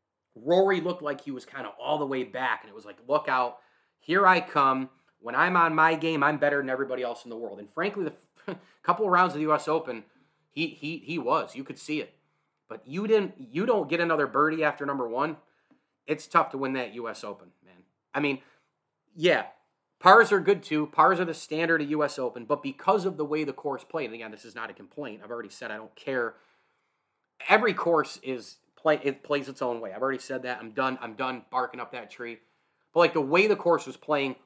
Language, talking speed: English, 235 wpm